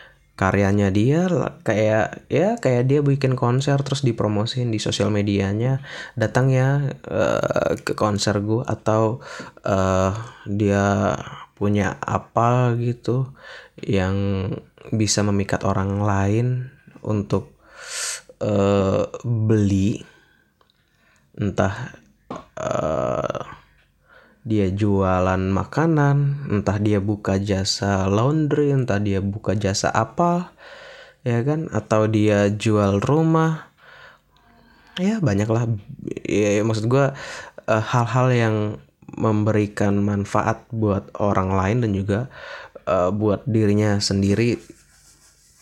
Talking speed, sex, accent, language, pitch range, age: 95 wpm, male, native, Indonesian, 100-130 Hz, 20-39